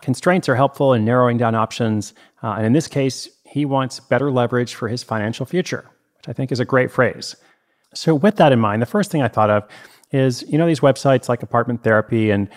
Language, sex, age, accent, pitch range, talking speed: English, male, 30-49, American, 110-135 Hz, 225 wpm